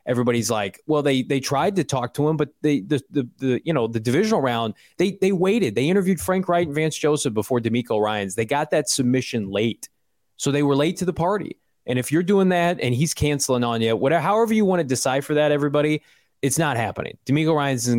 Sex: male